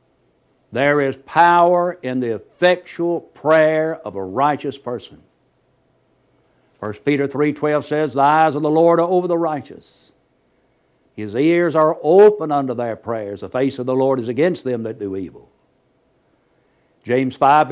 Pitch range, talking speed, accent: 125-160 Hz, 150 wpm, American